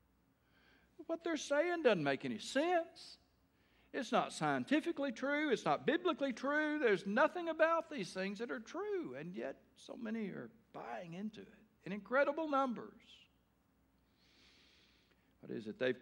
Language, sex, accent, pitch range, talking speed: English, male, American, 105-155 Hz, 140 wpm